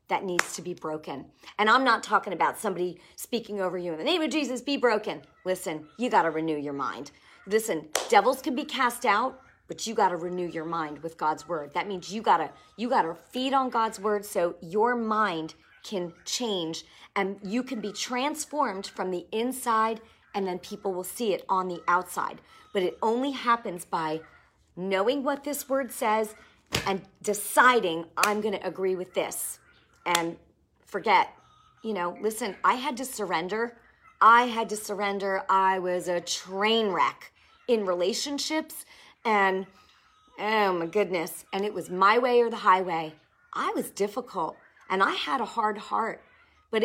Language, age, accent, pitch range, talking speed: English, 40-59, American, 180-245 Hz, 170 wpm